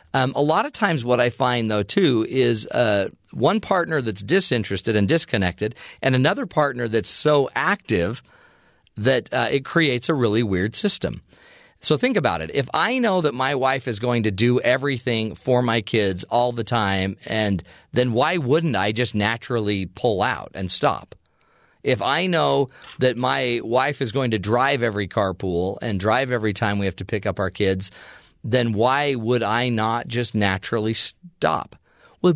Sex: male